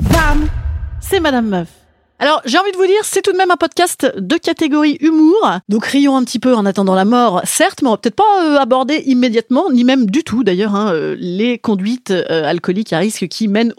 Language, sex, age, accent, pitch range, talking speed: French, female, 30-49, French, 195-310 Hz, 220 wpm